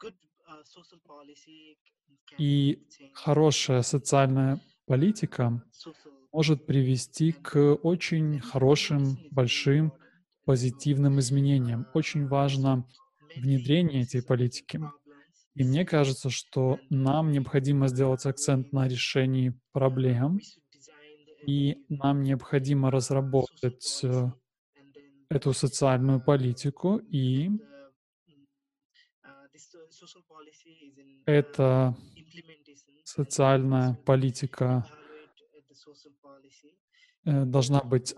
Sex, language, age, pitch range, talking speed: male, Russian, 20-39, 135-155 Hz, 65 wpm